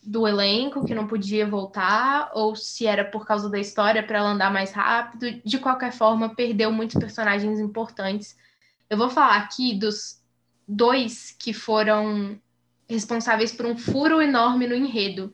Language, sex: Portuguese, female